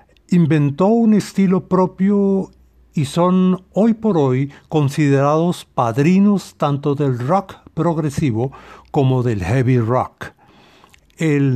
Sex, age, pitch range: male, 60-79, 135-170 Hz